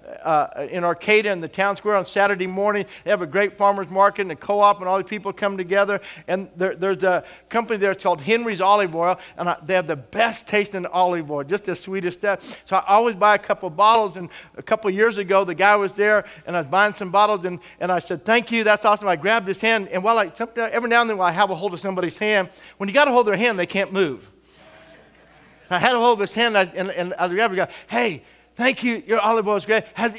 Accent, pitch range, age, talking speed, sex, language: American, 185-225 Hz, 50-69, 265 wpm, male, English